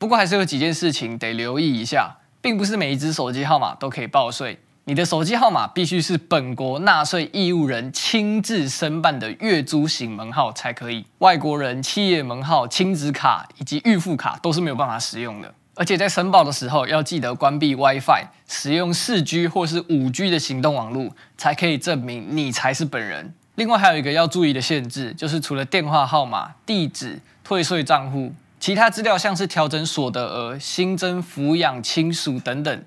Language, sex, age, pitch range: Chinese, male, 20-39, 130-175 Hz